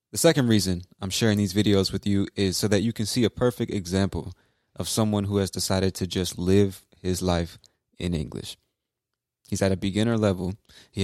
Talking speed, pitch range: 195 wpm, 90-110 Hz